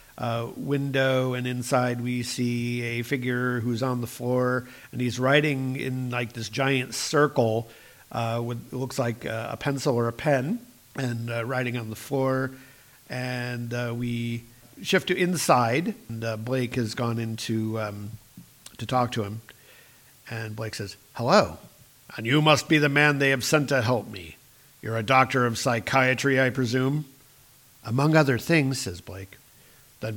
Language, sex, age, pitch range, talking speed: English, male, 50-69, 115-140 Hz, 165 wpm